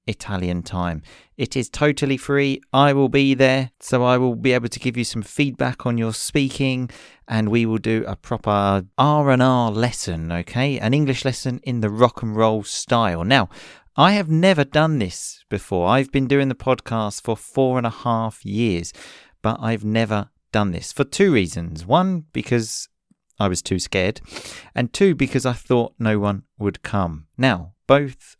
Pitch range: 105-140 Hz